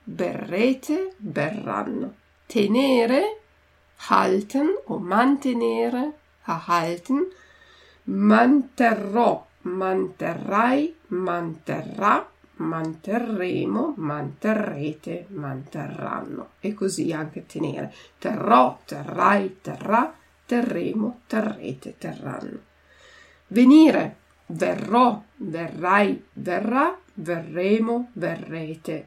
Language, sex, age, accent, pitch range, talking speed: Italian, female, 50-69, native, 175-245 Hz, 60 wpm